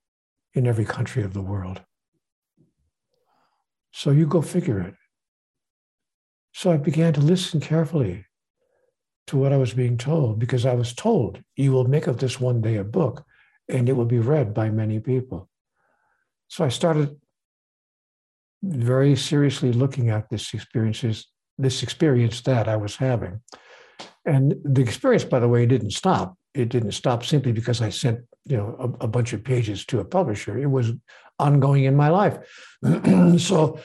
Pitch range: 115-140 Hz